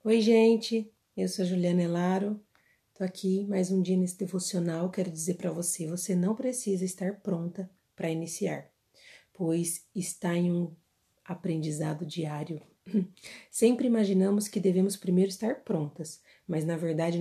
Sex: female